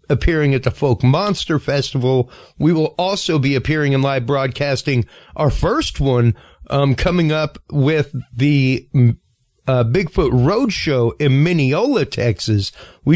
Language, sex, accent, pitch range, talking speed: English, male, American, 125-155 Hz, 130 wpm